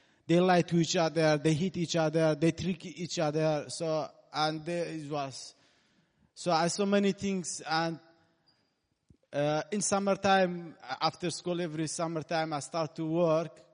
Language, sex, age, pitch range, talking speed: English, male, 30-49, 150-180 Hz, 155 wpm